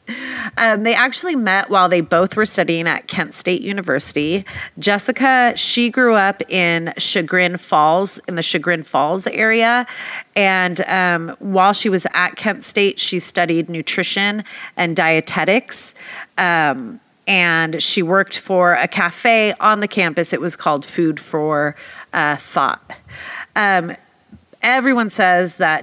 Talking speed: 135 wpm